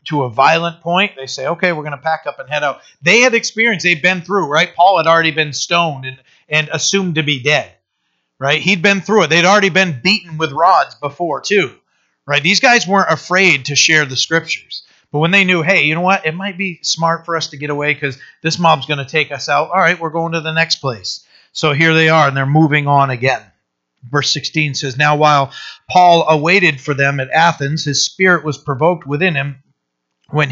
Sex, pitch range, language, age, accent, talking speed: male, 140-175 Hz, English, 40-59, American, 225 wpm